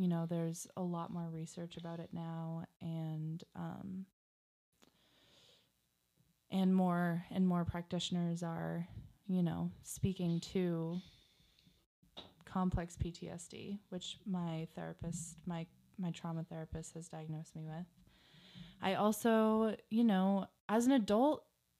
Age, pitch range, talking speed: 20-39, 170-195 Hz, 115 wpm